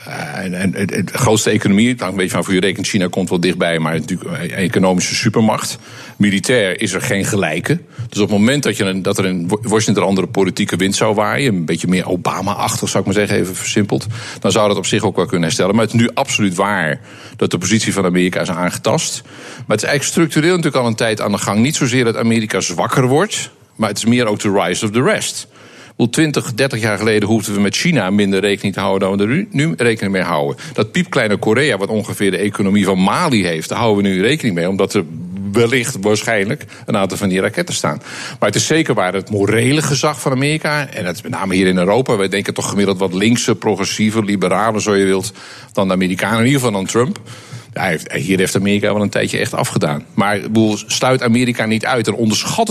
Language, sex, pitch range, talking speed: Dutch, male, 95-120 Hz, 230 wpm